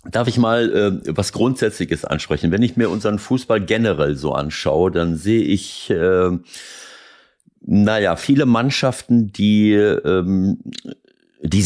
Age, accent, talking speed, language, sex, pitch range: 50-69, German, 130 wpm, German, male, 90-110 Hz